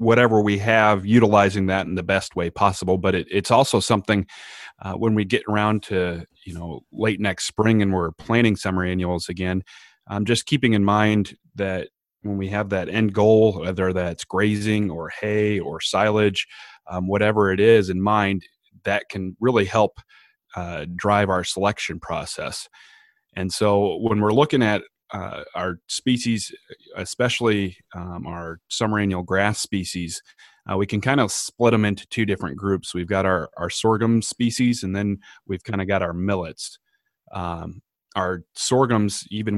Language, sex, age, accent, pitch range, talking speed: English, male, 30-49, American, 90-110 Hz, 165 wpm